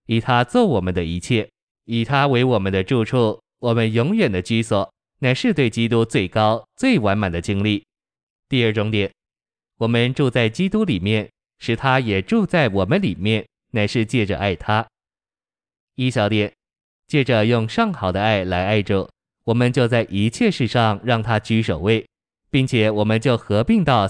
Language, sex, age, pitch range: Chinese, male, 20-39, 100-125 Hz